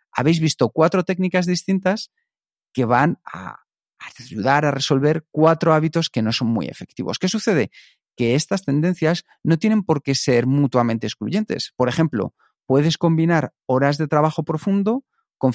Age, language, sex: 40-59, Spanish, male